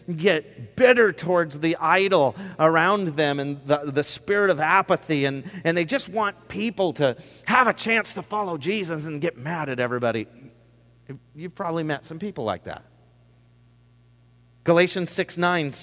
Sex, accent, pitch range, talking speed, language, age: male, American, 120-190 Hz, 150 wpm, English, 40-59